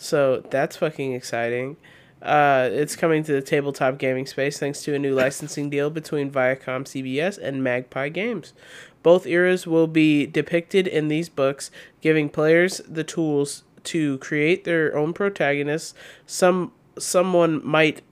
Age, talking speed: 20-39, 145 wpm